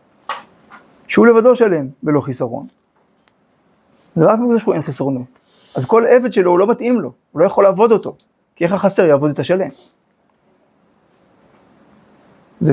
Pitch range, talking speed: 140-200 Hz, 145 wpm